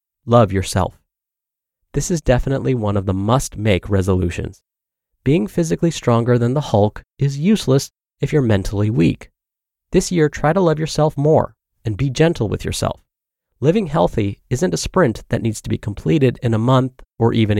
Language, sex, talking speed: English, male, 165 wpm